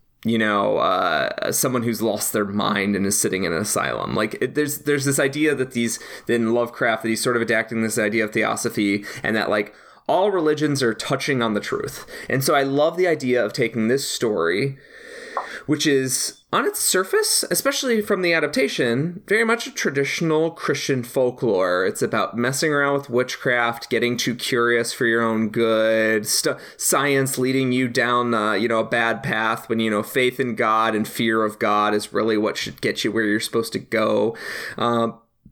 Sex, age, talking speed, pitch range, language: male, 20-39, 190 wpm, 115-150 Hz, English